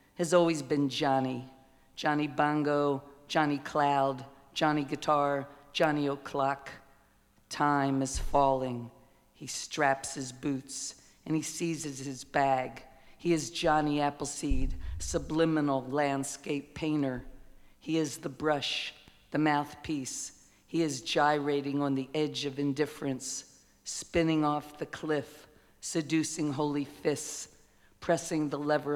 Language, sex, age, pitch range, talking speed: Italian, female, 50-69, 135-150 Hz, 115 wpm